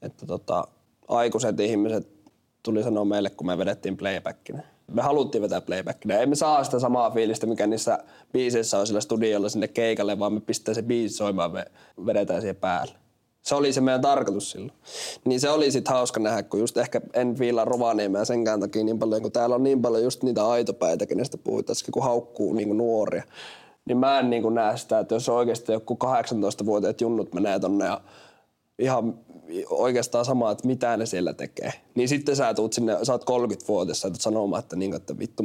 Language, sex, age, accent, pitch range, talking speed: Finnish, male, 20-39, native, 110-130 Hz, 190 wpm